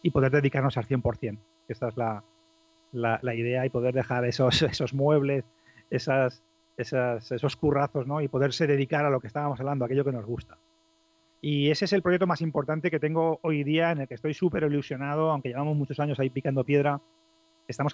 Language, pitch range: Spanish, 130-155 Hz